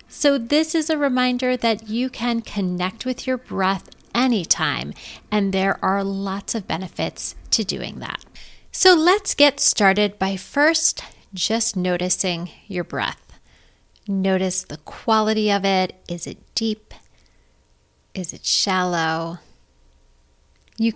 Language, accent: English, American